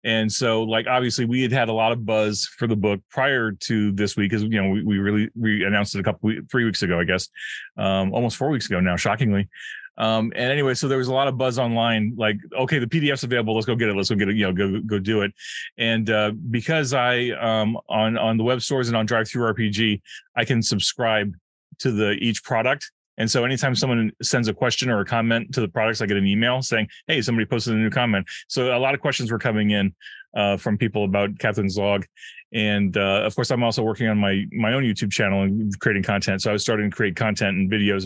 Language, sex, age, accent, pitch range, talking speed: English, male, 30-49, American, 105-120 Hz, 250 wpm